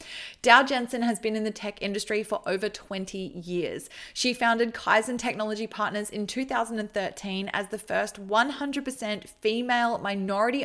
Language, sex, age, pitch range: English, female, 20-39, 200-235 Hz